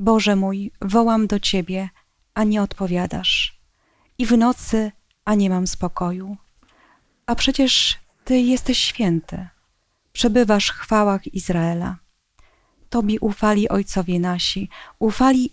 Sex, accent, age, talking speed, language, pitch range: female, native, 30-49, 110 wpm, Polish, 180-225 Hz